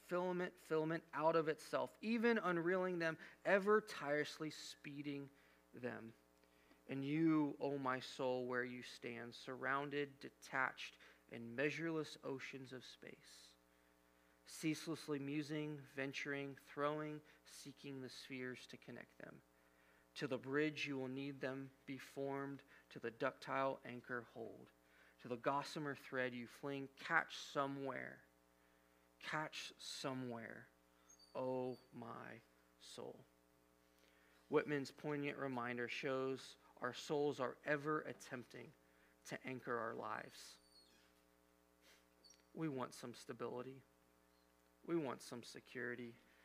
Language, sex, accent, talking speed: English, male, American, 110 wpm